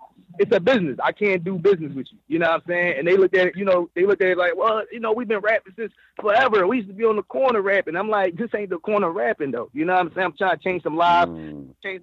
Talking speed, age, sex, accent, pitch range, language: 310 wpm, 30-49, male, American, 160-215 Hz, English